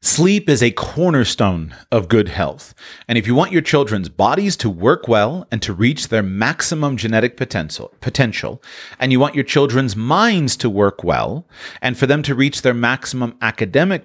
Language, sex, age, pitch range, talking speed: English, male, 40-59, 105-145 Hz, 180 wpm